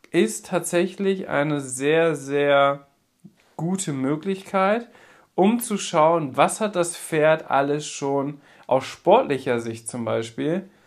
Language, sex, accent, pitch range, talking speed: German, male, German, 145-195 Hz, 115 wpm